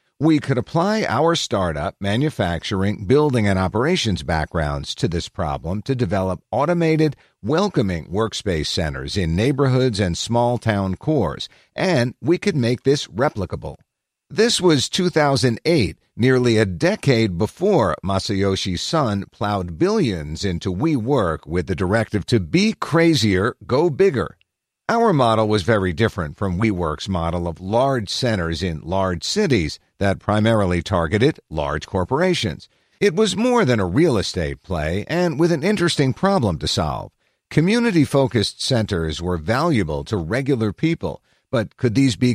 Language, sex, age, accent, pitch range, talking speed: English, male, 50-69, American, 95-145 Hz, 135 wpm